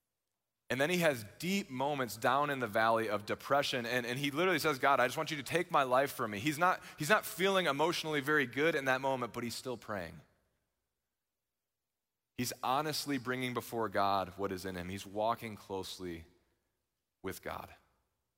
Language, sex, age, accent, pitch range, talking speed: English, male, 20-39, American, 110-150 Hz, 185 wpm